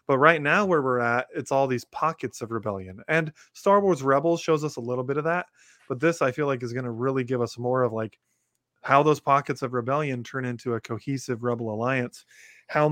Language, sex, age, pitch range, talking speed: English, male, 20-39, 120-150 Hz, 230 wpm